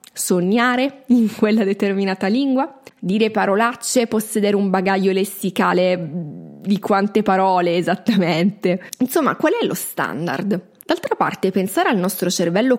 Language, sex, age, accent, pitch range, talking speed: Italian, female, 20-39, native, 180-225 Hz, 120 wpm